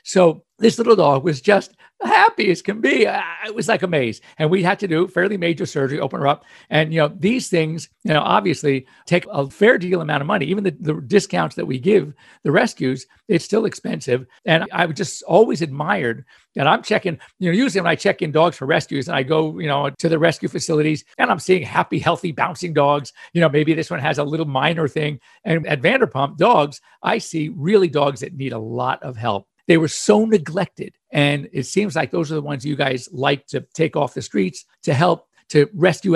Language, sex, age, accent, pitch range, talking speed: English, male, 50-69, American, 145-185 Hz, 225 wpm